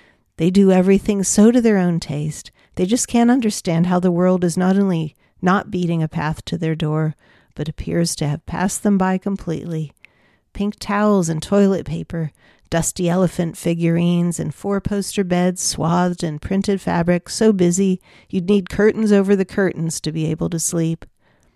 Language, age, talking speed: English, 50-69, 170 wpm